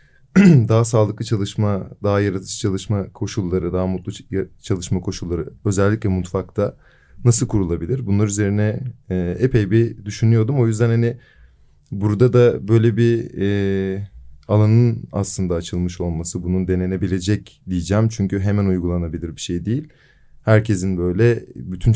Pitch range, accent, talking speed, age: 95-115 Hz, native, 120 wpm, 30-49